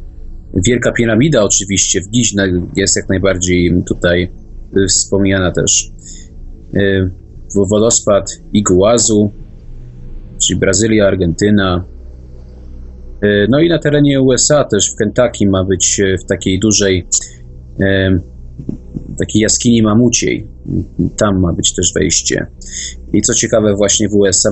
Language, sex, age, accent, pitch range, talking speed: Polish, male, 20-39, native, 90-105 Hz, 105 wpm